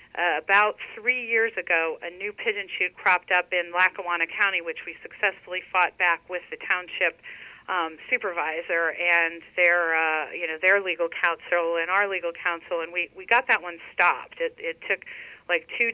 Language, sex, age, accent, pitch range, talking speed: English, female, 40-59, American, 170-245 Hz, 180 wpm